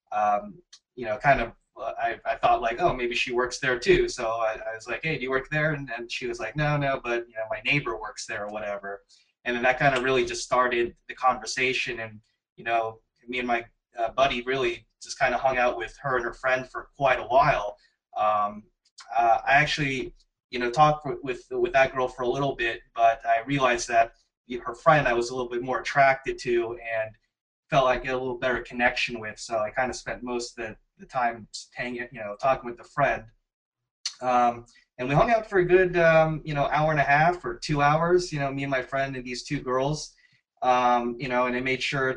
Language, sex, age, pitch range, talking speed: English, male, 20-39, 115-135 Hz, 240 wpm